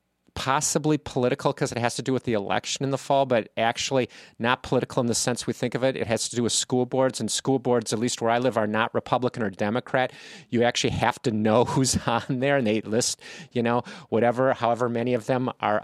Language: English